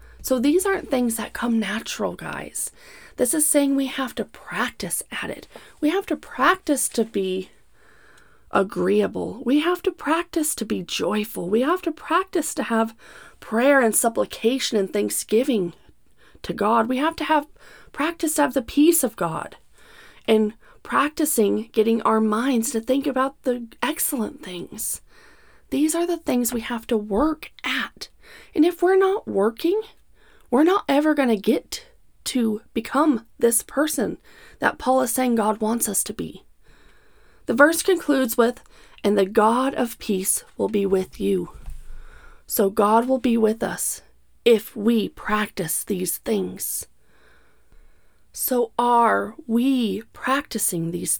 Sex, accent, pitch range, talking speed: female, American, 210-290 Hz, 150 wpm